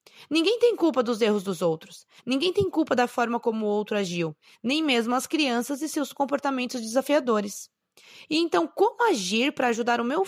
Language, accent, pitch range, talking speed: Portuguese, Brazilian, 210-275 Hz, 185 wpm